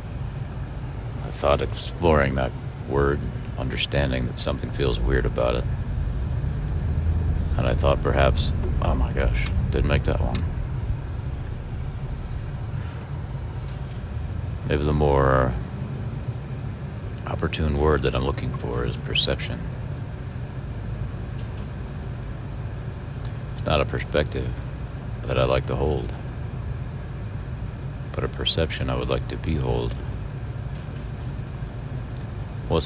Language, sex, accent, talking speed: English, male, American, 95 wpm